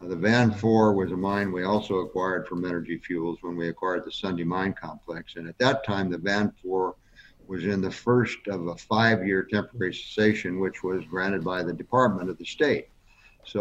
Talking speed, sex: 200 wpm, male